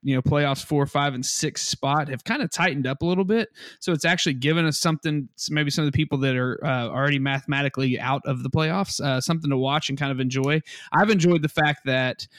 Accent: American